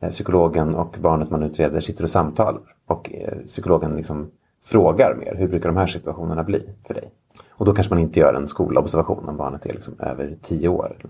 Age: 30-49